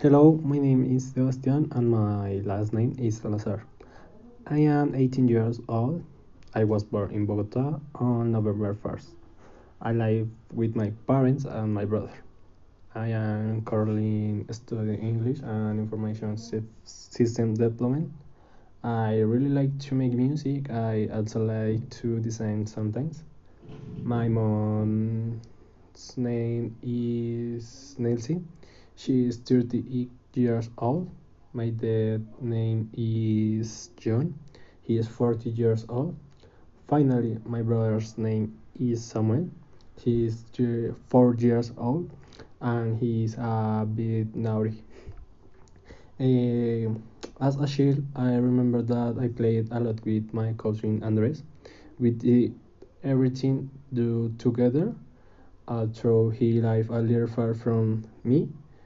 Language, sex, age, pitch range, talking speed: English, male, 20-39, 110-125 Hz, 120 wpm